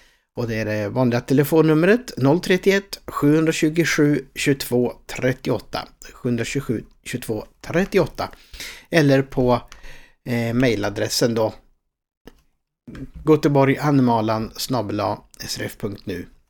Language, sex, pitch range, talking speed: Swedish, male, 110-140 Hz, 65 wpm